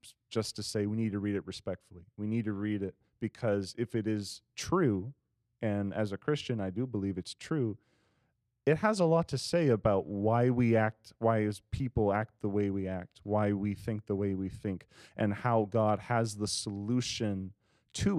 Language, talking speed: English, 200 wpm